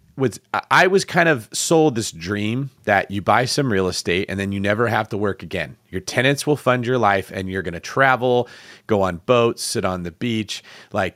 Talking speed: 215 wpm